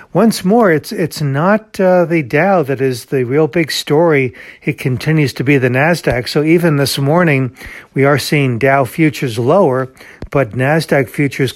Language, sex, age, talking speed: English, male, 60-79, 170 wpm